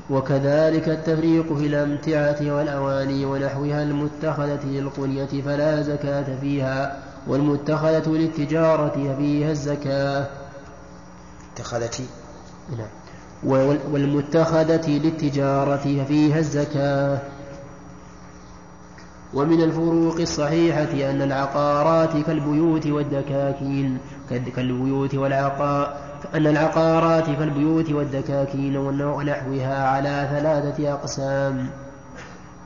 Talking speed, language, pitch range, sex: 70 wpm, Arabic, 140-155 Hz, male